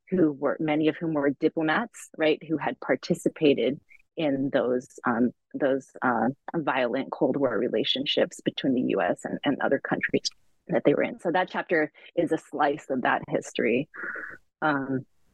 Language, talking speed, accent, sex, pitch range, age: English, 160 wpm, American, female, 140-165 Hz, 30-49